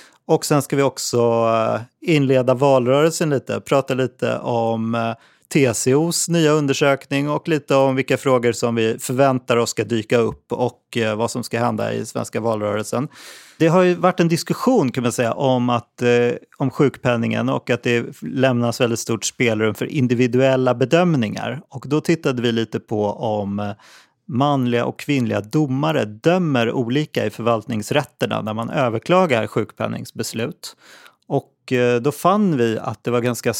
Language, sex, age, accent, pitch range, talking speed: Swedish, male, 30-49, native, 115-140 Hz, 150 wpm